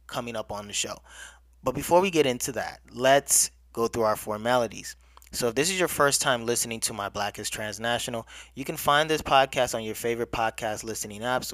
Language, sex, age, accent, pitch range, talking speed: English, male, 20-39, American, 105-125 Hz, 205 wpm